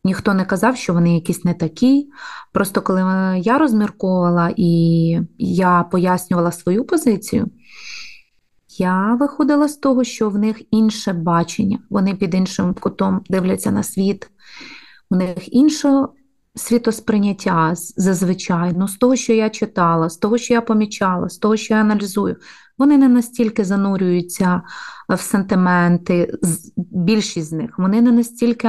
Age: 30-49